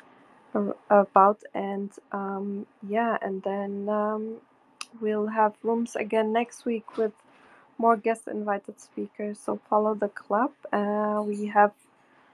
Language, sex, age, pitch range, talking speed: English, female, 20-39, 200-230 Hz, 120 wpm